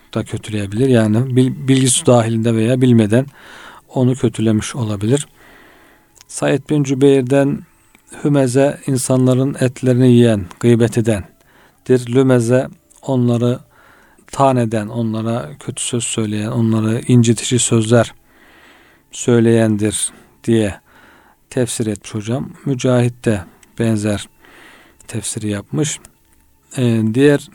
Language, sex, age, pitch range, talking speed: Turkish, male, 40-59, 110-135 Hz, 90 wpm